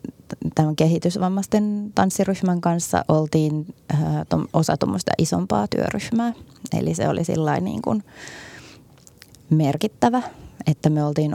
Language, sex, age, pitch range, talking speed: Finnish, female, 20-39, 150-185 Hz, 105 wpm